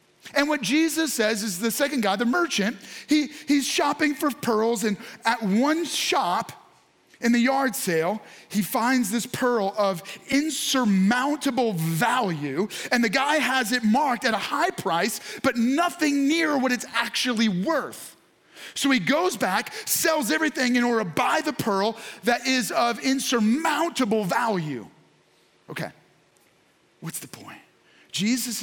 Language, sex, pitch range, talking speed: English, male, 225-295 Hz, 145 wpm